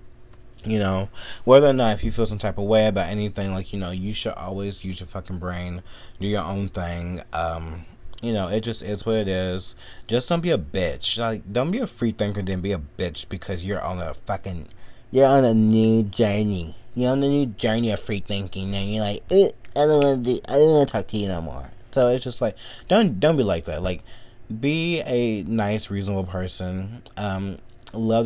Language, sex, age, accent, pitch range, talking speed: English, male, 20-39, American, 95-120 Hz, 210 wpm